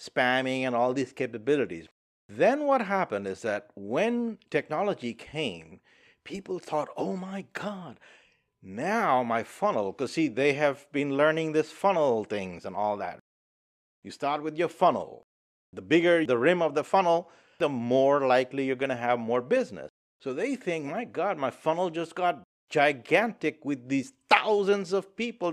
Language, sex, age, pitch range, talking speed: English, male, 50-69, 120-170 Hz, 160 wpm